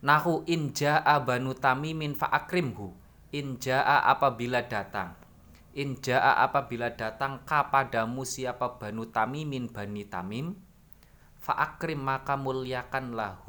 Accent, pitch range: native, 115-140 Hz